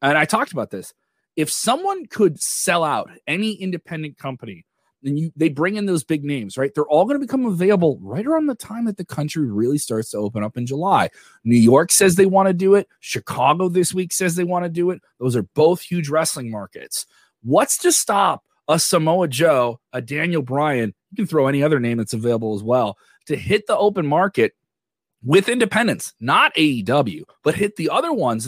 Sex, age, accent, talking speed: male, 30-49, American, 205 wpm